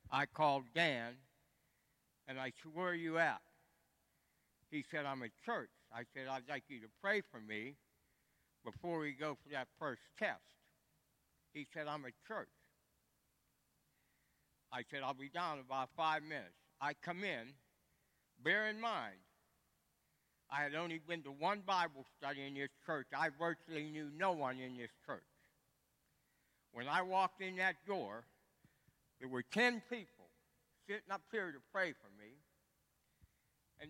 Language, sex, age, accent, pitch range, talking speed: English, male, 60-79, American, 135-175 Hz, 155 wpm